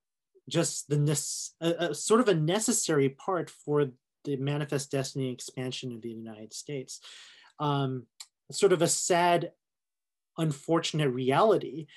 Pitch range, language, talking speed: 135-180 Hz, English, 120 wpm